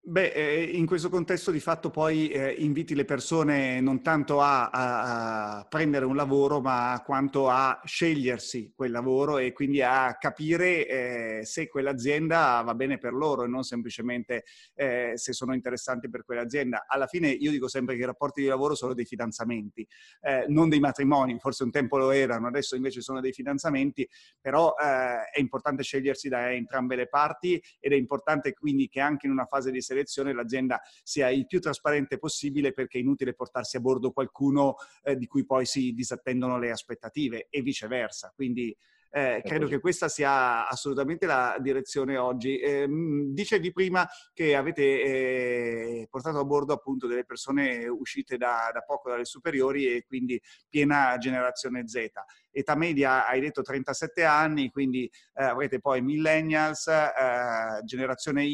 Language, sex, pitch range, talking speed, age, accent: Italian, male, 125-145 Hz, 160 wpm, 30-49, native